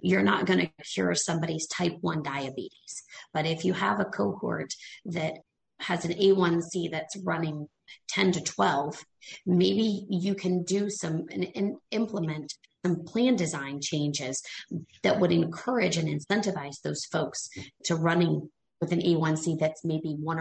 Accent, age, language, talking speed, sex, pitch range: American, 30-49, English, 150 wpm, female, 155-185 Hz